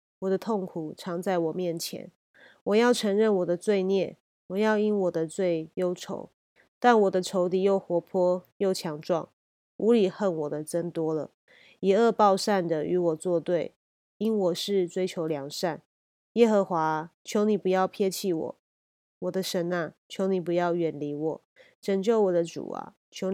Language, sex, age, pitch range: Chinese, female, 30-49, 165-190 Hz